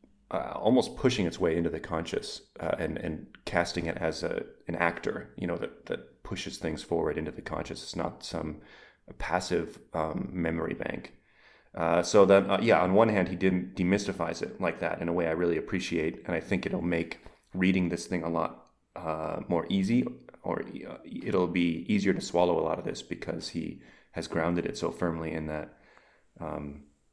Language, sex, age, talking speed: English, male, 30-49, 190 wpm